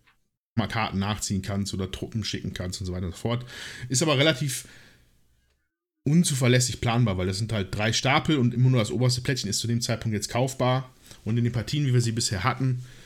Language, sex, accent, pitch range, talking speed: German, male, German, 105-140 Hz, 210 wpm